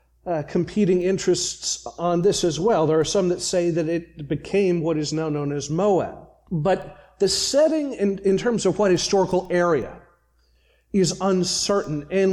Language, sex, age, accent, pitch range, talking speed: English, male, 40-59, American, 160-205 Hz, 165 wpm